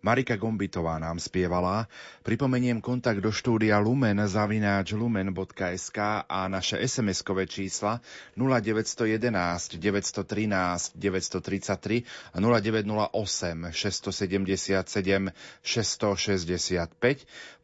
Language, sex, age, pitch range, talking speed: Slovak, male, 30-49, 95-115 Hz, 65 wpm